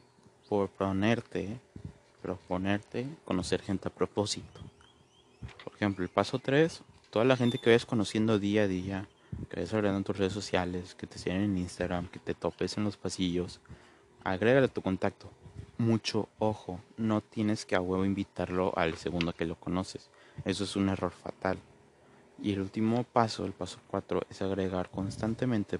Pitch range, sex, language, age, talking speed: 95-110 Hz, male, Spanish, 30-49, 160 wpm